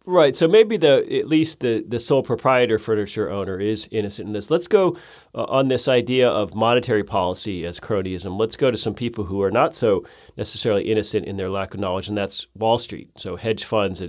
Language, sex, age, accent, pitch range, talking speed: English, male, 40-59, American, 100-125 Hz, 215 wpm